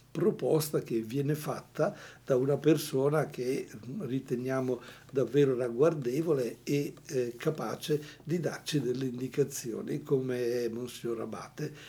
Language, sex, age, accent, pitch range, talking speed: Portuguese, male, 60-79, Italian, 120-145 Hz, 105 wpm